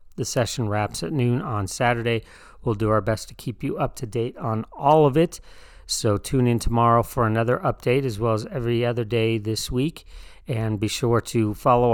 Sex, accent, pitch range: male, American, 110-130 Hz